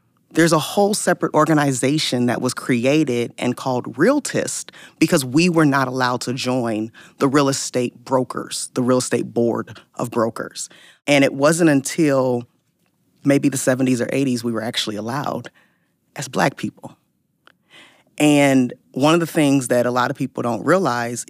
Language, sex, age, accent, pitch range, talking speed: English, female, 20-39, American, 120-140 Hz, 160 wpm